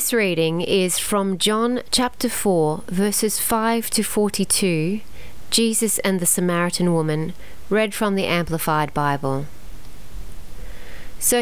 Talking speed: 115 wpm